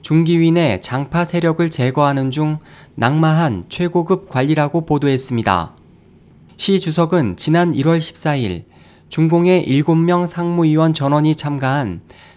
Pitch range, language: 130-170 Hz, Korean